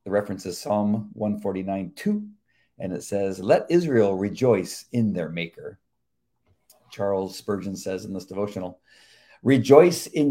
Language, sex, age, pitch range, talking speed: English, male, 50-69, 95-125 Hz, 135 wpm